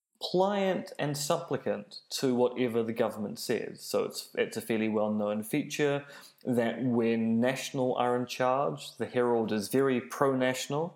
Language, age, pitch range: English, 20-39, 110-130 Hz